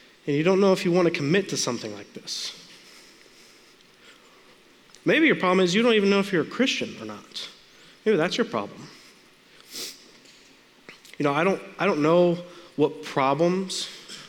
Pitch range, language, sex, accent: 120-185 Hz, English, male, American